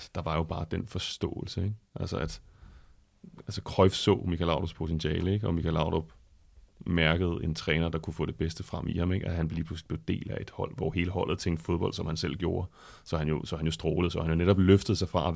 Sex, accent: male, native